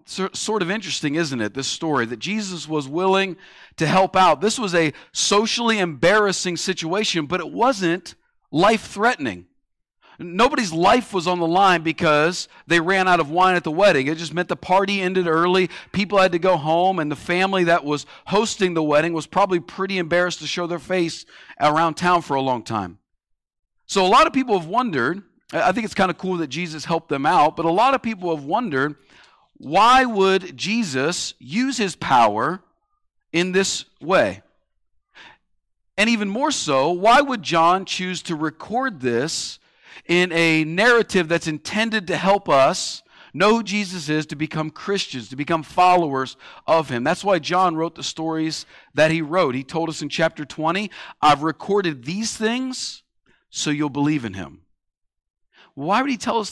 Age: 40-59